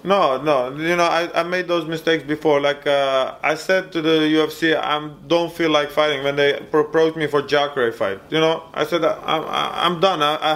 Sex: male